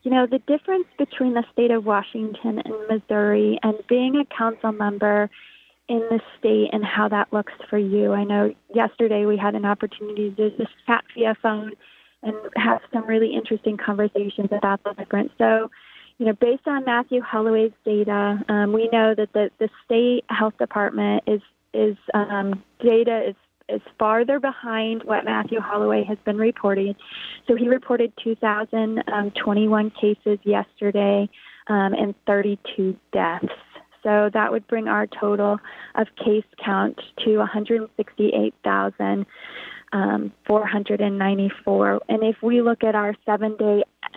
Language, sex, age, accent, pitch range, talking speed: English, female, 20-39, American, 205-225 Hz, 145 wpm